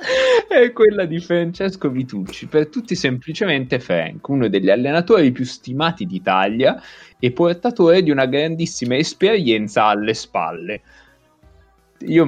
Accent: native